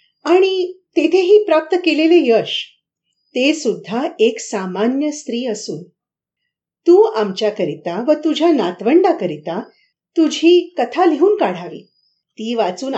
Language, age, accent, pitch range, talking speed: Marathi, 50-69, native, 205-330 Hz, 100 wpm